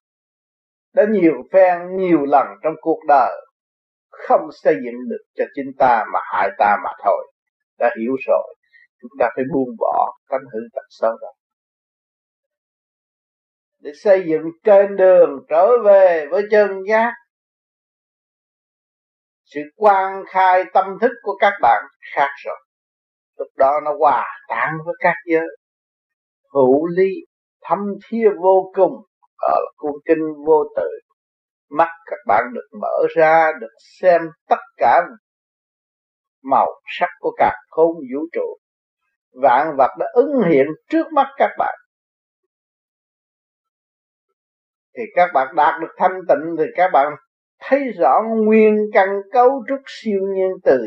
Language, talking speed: Vietnamese, 135 wpm